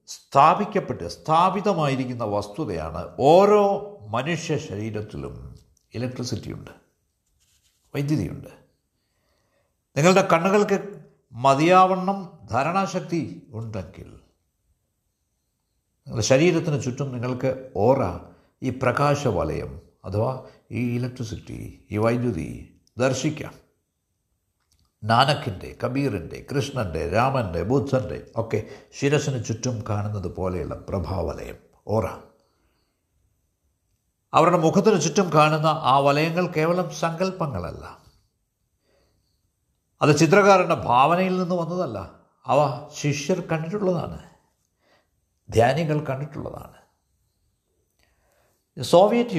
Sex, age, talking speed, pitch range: male, 60-79, 70 wpm, 100-155 Hz